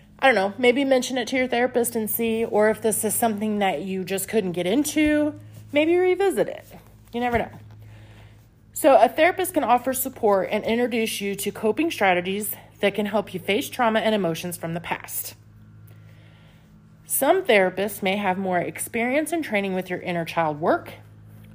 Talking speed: 180 wpm